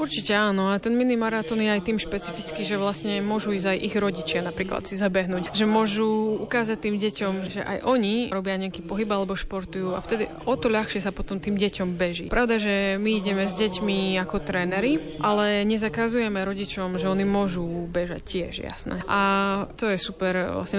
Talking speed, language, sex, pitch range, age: 190 wpm, Slovak, female, 185-210 Hz, 20-39